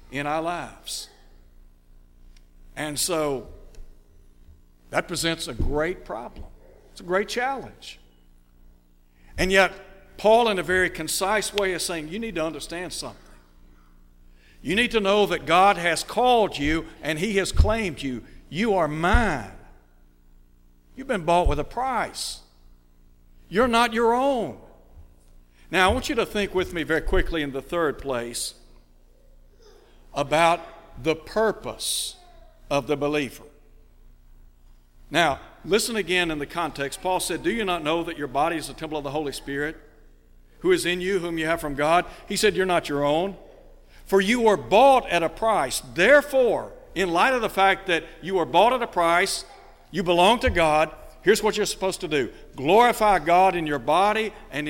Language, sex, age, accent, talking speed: English, male, 60-79, American, 165 wpm